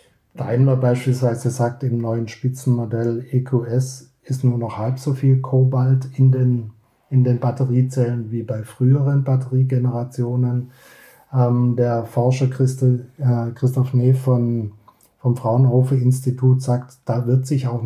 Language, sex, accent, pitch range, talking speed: German, male, German, 120-135 Hz, 120 wpm